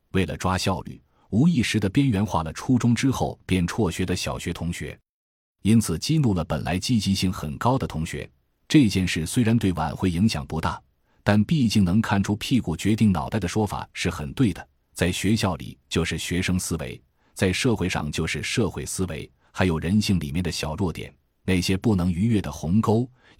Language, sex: Chinese, male